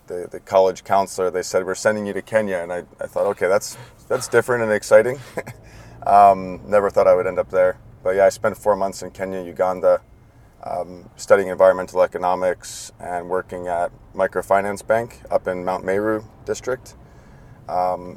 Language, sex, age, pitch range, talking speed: English, male, 30-49, 95-115 Hz, 175 wpm